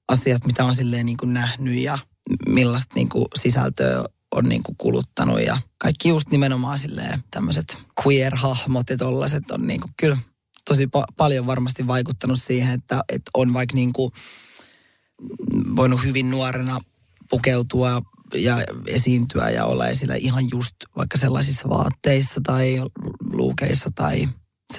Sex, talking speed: male, 120 wpm